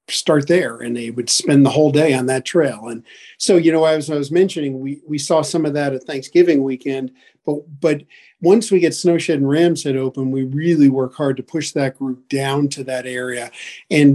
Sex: male